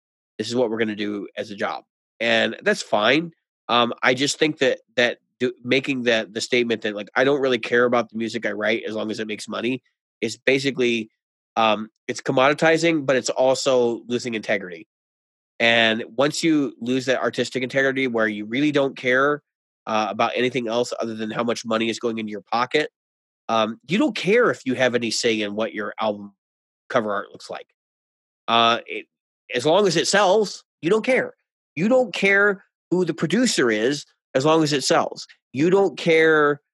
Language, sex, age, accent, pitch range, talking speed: English, male, 30-49, American, 115-150 Hz, 195 wpm